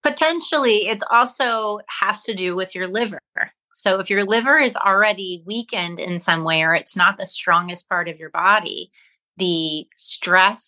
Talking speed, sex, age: 170 wpm, female, 30-49